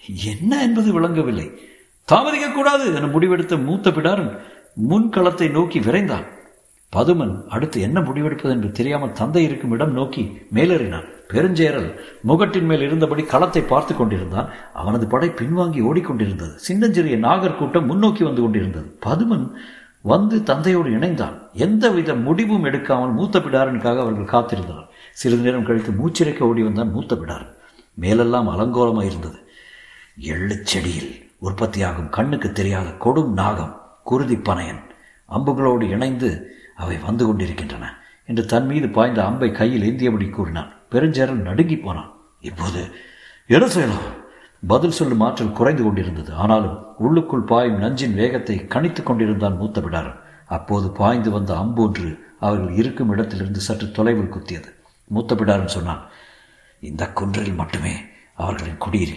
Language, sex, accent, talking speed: Tamil, male, native, 120 wpm